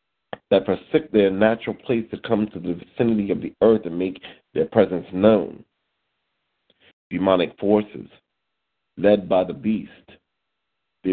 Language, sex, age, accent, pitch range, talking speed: English, male, 50-69, American, 95-115 Hz, 135 wpm